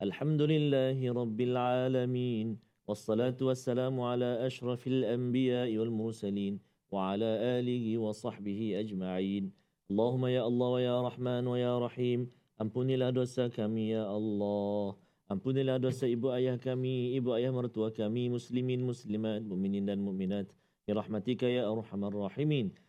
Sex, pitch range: male, 115-150 Hz